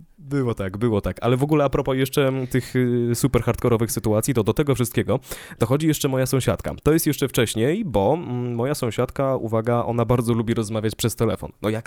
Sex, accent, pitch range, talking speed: male, native, 110-145 Hz, 190 wpm